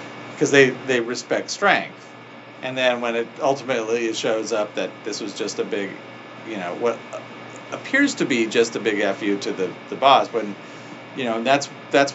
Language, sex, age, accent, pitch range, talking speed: English, male, 40-59, American, 110-140 Hz, 185 wpm